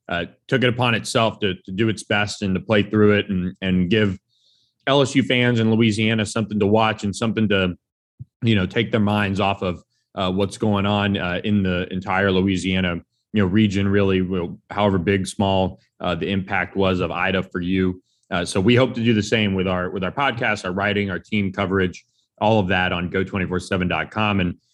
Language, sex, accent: English, male, American